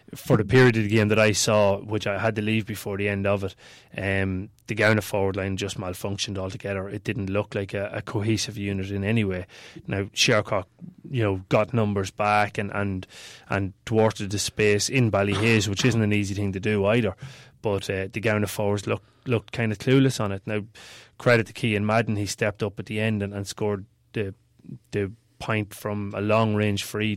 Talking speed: 210 wpm